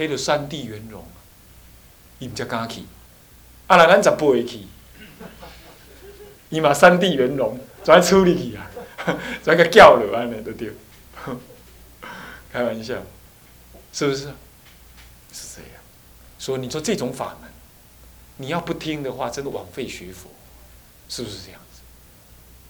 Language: Chinese